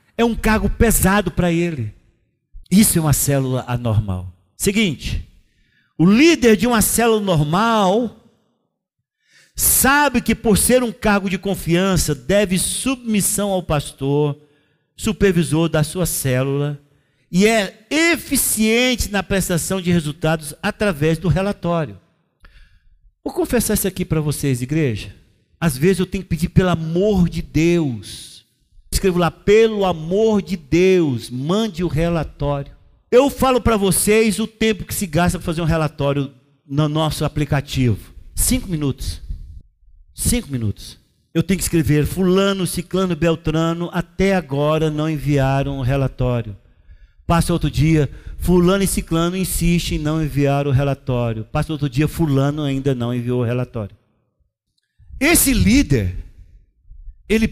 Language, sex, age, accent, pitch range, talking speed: Portuguese, male, 50-69, Brazilian, 135-195 Hz, 130 wpm